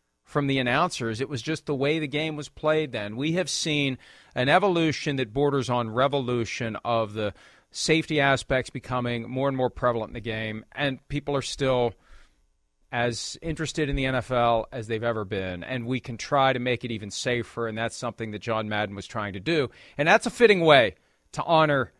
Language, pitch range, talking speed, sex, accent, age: English, 120-160 Hz, 200 wpm, male, American, 40-59